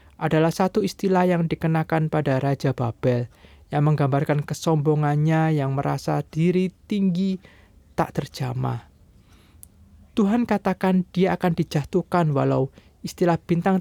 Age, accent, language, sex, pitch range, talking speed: 20-39, native, Indonesian, male, 130-165 Hz, 110 wpm